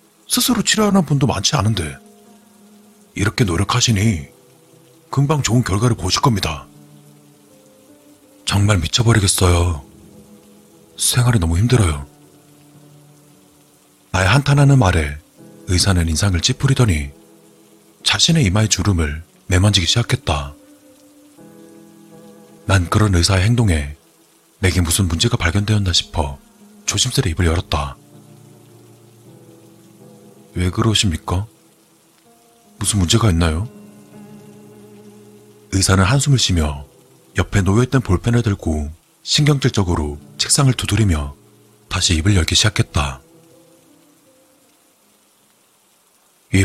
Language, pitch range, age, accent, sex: Korean, 85-125 Hz, 40-59, native, male